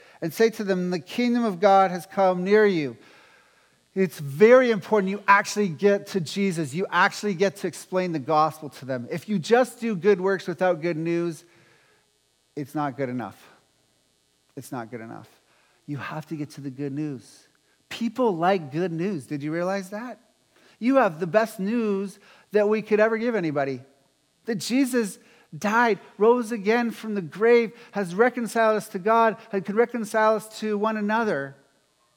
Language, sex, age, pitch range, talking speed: English, male, 50-69, 155-220 Hz, 175 wpm